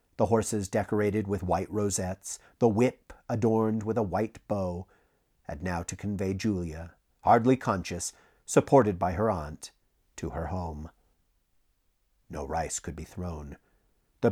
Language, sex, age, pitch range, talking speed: English, male, 50-69, 85-110 Hz, 140 wpm